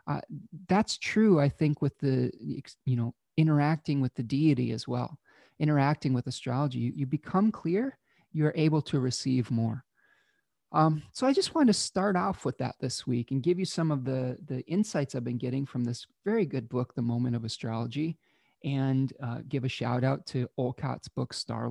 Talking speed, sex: 190 wpm, male